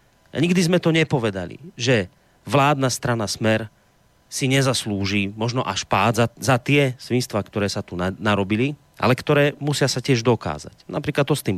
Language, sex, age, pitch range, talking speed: Slovak, male, 30-49, 105-145 Hz, 160 wpm